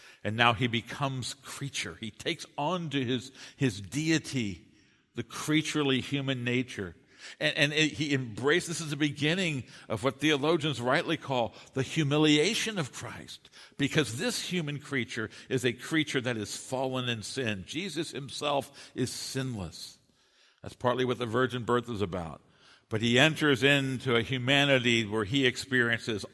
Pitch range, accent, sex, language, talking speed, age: 105-135 Hz, American, male, English, 155 wpm, 60-79